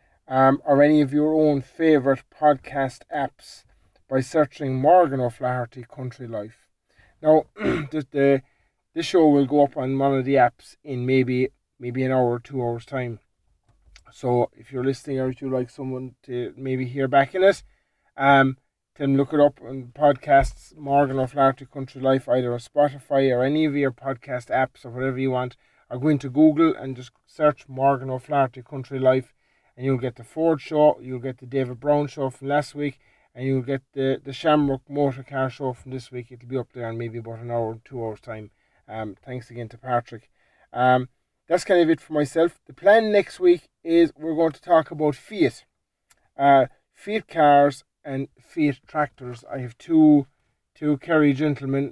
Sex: male